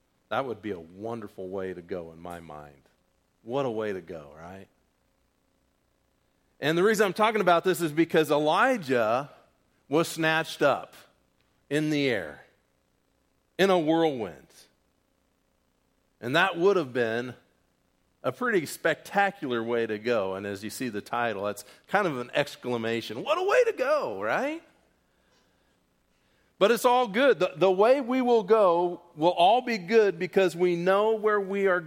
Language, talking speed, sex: English, 160 wpm, male